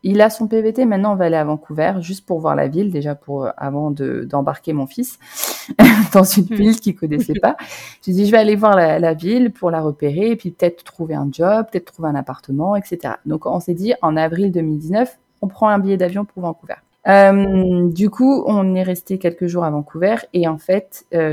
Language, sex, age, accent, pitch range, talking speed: English, female, 20-39, French, 160-195 Hz, 220 wpm